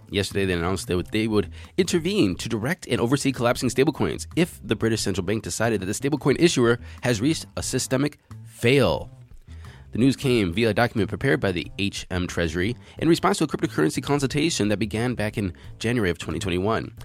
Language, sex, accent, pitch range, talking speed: English, male, American, 100-130 Hz, 185 wpm